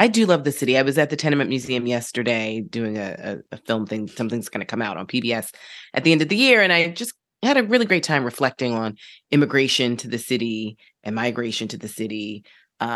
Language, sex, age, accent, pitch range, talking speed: English, female, 20-39, American, 120-150 Hz, 235 wpm